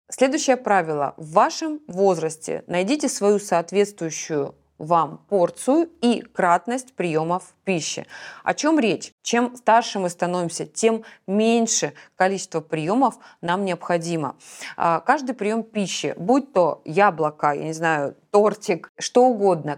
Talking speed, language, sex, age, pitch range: 120 wpm, Russian, female, 20-39, 175-225 Hz